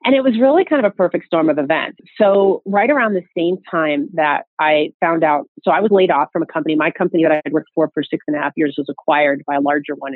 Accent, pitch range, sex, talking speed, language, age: American, 145-180 Hz, female, 285 wpm, English, 30-49